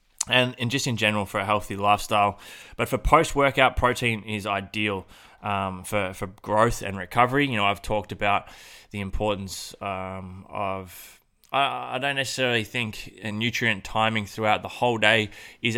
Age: 20-39